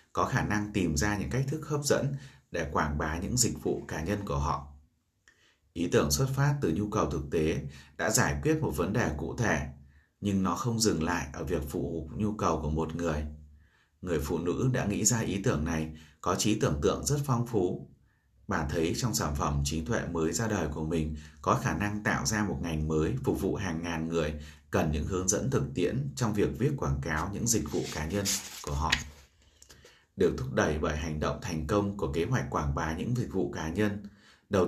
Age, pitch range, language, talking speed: 30-49, 75-110 Hz, Vietnamese, 220 wpm